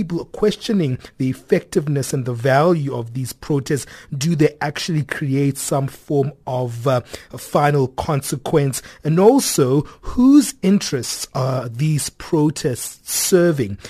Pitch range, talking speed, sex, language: 130-160 Hz, 120 wpm, male, English